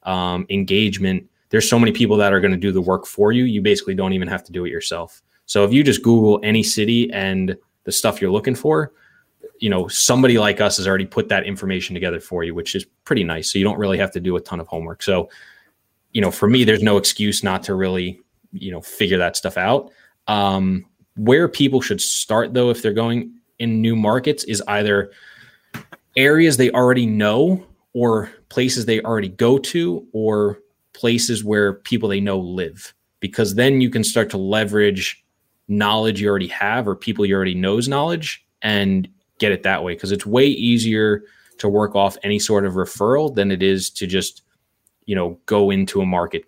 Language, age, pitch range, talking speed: English, 20-39, 95-115 Hz, 205 wpm